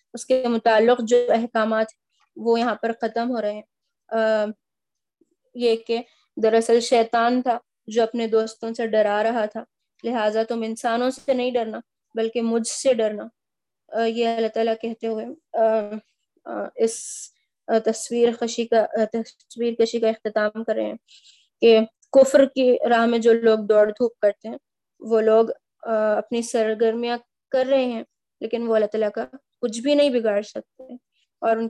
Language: Urdu